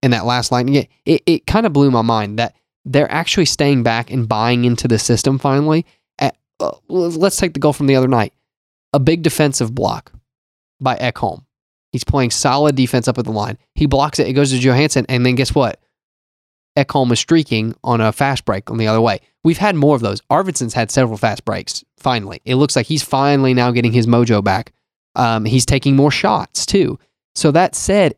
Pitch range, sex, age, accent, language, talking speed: 115-140 Hz, male, 20-39, American, English, 210 wpm